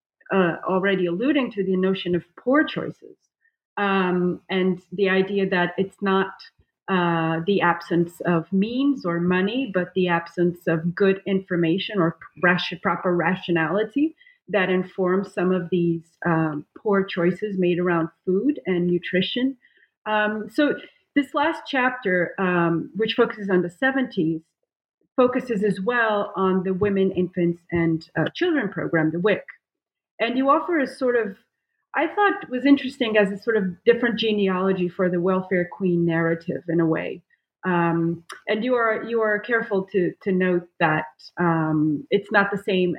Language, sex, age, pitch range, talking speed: English, female, 30-49, 175-225 Hz, 150 wpm